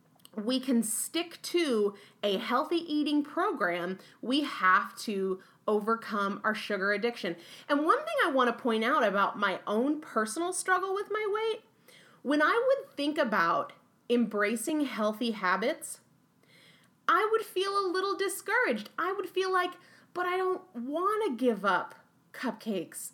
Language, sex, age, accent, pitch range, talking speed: English, female, 30-49, American, 225-355 Hz, 145 wpm